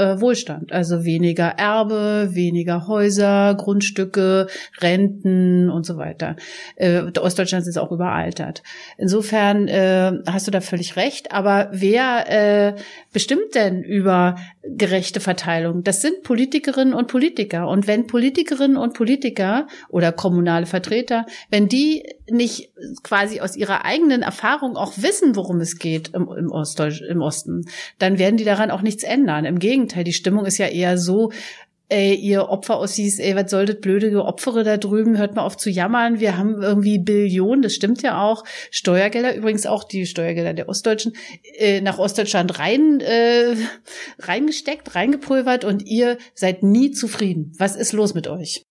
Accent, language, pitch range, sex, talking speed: German, German, 185-230 Hz, female, 150 wpm